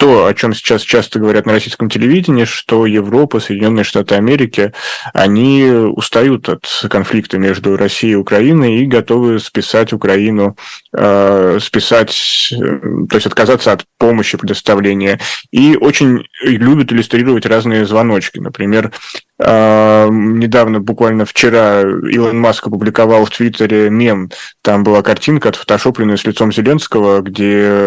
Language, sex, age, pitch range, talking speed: Russian, male, 20-39, 105-120 Hz, 130 wpm